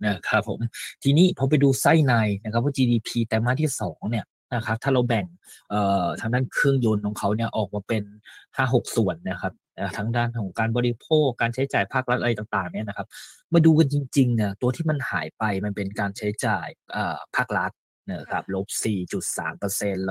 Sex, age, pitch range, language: male, 20-39, 100-120 Hz, Thai